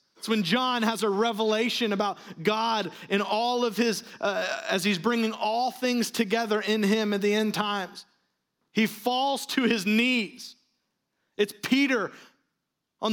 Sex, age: male, 30-49